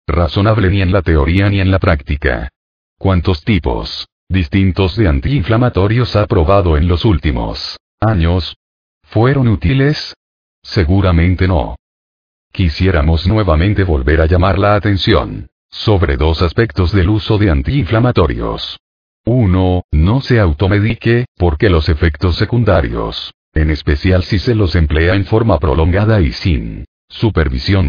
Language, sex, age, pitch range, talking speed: Spanish, male, 40-59, 80-105 Hz, 125 wpm